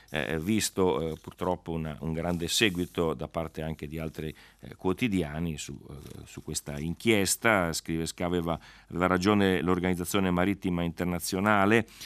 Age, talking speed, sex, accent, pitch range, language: 40-59, 125 wpm, male, native, 80-100 Hz, Italian